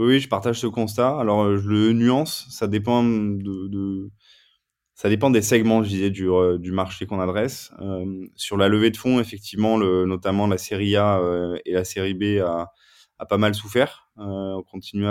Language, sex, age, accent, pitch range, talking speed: French, male, 20-39, French, 90-105 Hz, 200 wpm